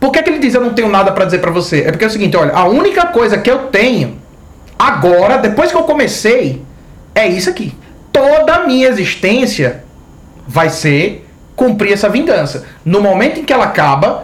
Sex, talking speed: male, 200 wpm